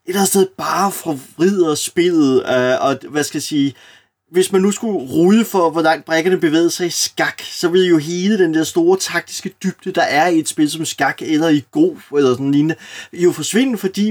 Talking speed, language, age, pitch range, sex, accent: 215 wpm, Danish, 30-49, 140-190 Hz, male, native